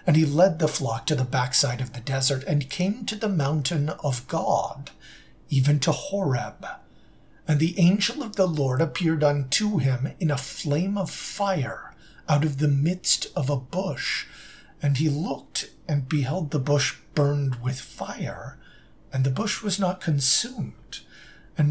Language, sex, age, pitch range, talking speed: English, male, 50-69, 135-165 Hz, 165 wpm